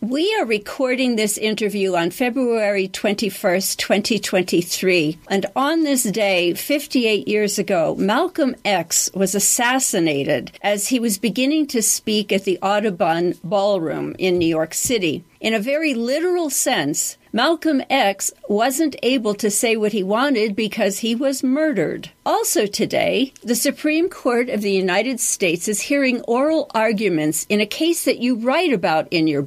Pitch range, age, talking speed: 195-265 Hz, 50-69, 150 wpm